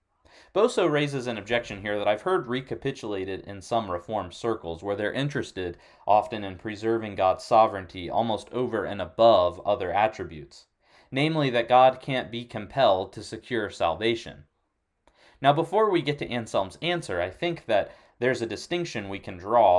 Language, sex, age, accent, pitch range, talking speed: English, male, 30-49, American, 95-125 Hz, 160 wpm